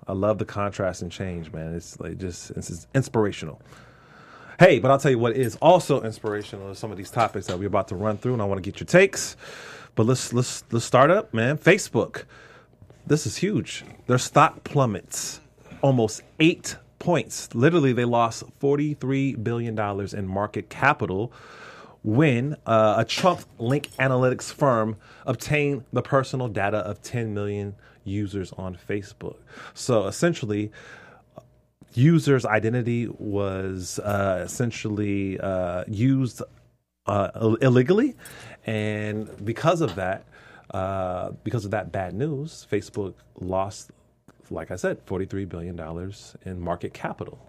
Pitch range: 100-130 Hz